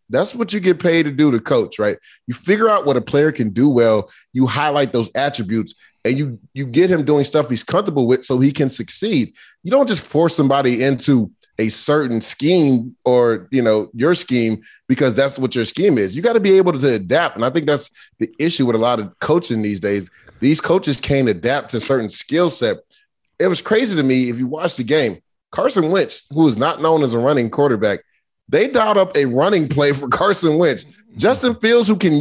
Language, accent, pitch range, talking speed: English, American, 130-185 Hz, 220 wpm